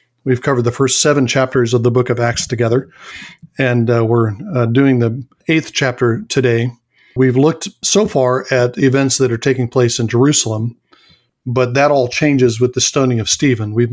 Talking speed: 185 wpm